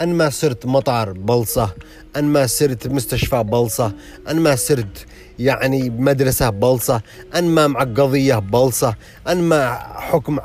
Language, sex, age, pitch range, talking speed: Arabic, male, 30-49, 125-175 Hz, 105 wpm